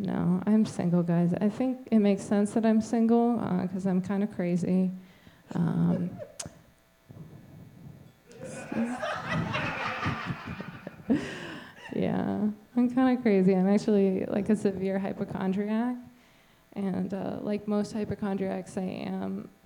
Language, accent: English, American